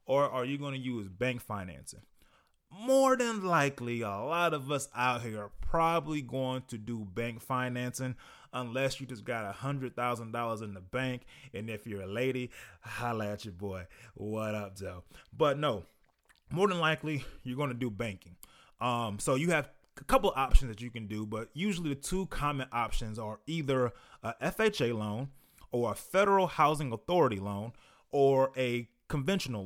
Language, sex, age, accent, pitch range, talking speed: English, male, 20-39, American, 110-140 Hz, 180 wpm